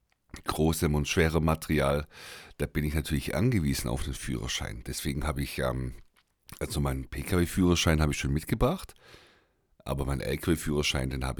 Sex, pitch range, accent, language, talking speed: male, 65-80 Hz, German, German, 145 wpm